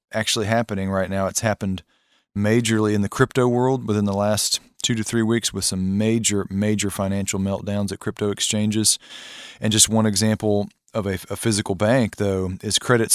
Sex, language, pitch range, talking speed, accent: male, English, 95-110 Hz, 180 wpm, American